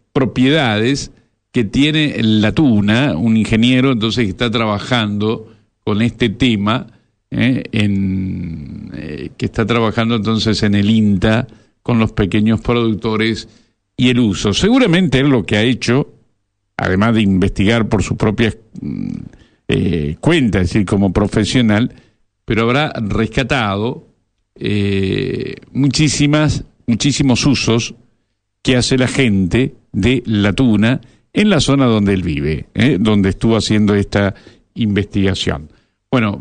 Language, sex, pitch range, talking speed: Spanish, male, 105-130 Hz, 125 wpm